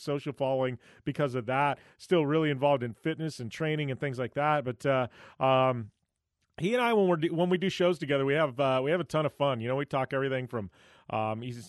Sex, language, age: male, English, 30-49